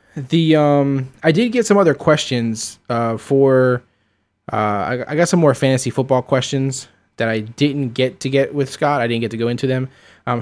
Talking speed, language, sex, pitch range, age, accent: 200 wpm, English, male, 110-140 Hz, 20-39, American